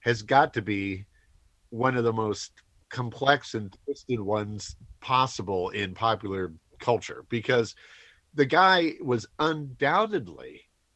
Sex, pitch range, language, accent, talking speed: male, 100-130 Hz, English, American, 115 wpm